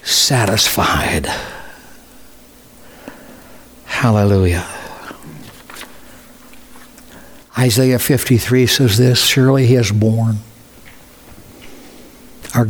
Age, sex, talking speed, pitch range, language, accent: 60-79, male, 50 wpm, 120-155 Hz, English, American